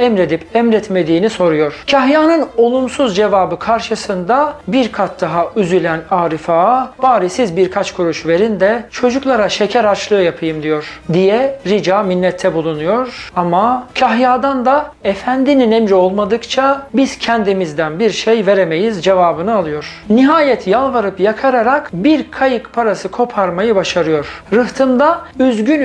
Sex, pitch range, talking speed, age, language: male, 180-255 Hz, 115 wpm, 40-59, Turkish